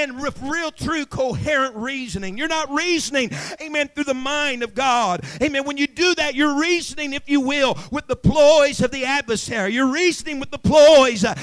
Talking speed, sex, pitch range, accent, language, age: 185 wpm, male, 205-300 Hz, American, English, 50-69